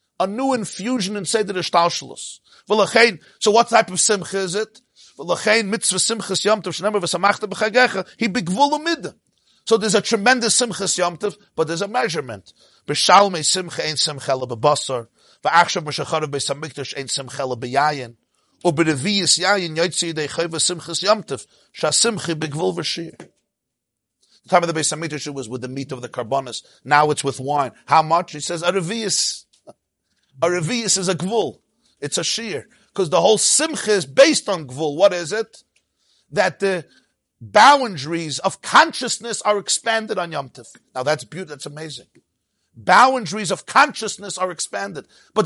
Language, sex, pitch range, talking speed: English, male, 160-225 Hz, 110 wpm